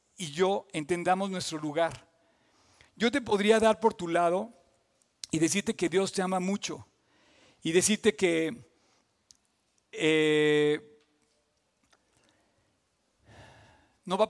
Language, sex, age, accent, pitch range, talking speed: Spanish, male, 50-69, Mexican, 160-210 Hz, 110 wpm